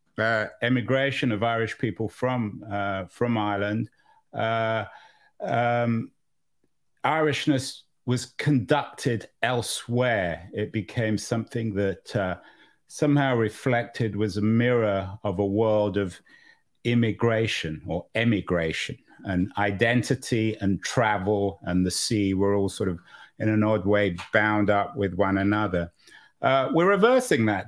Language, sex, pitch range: English, male, 105-130 Hz